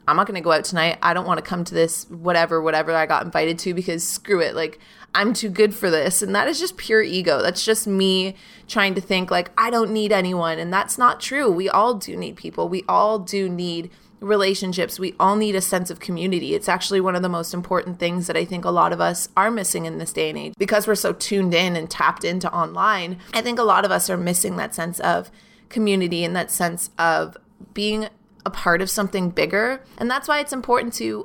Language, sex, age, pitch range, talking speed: English, female, 20-39, 165-215 Hz, 240 wpm